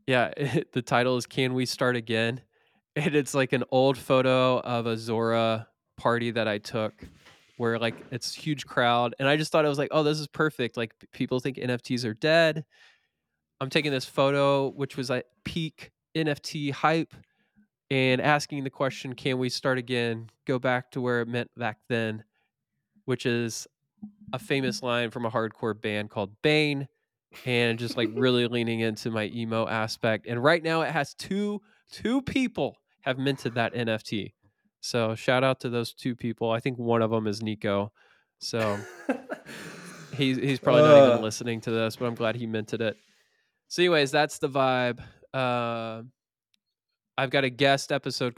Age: 20-39